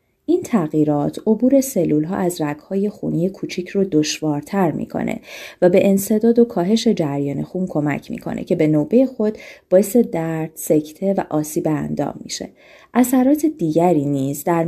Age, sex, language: 30-49, female, Persian